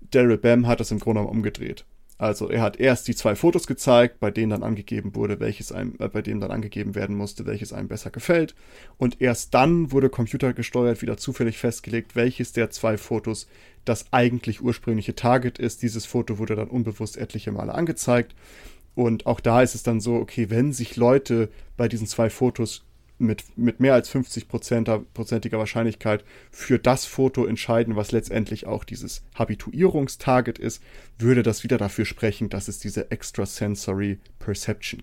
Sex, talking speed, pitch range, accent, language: male, 170 wpm, 105-125 Hz, German, German